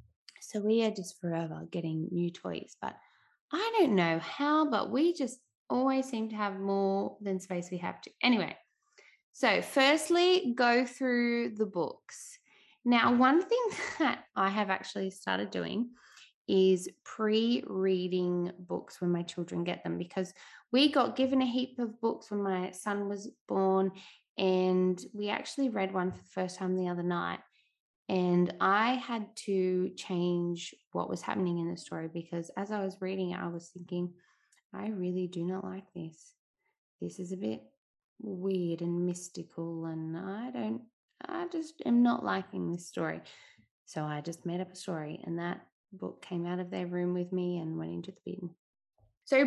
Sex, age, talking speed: female, 20-39, 170 wpm